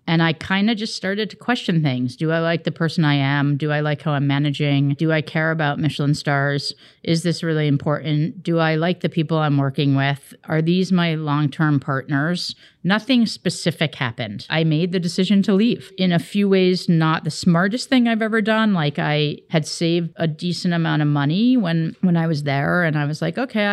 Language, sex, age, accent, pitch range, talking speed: English, female, 40-59, American, 145-175 Hz, 210 wpm